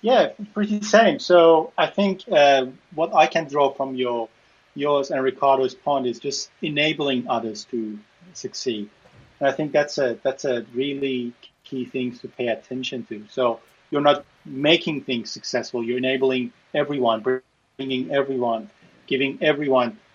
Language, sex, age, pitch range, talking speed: English, male, 30-49, 125-155 Hz, 150 wpm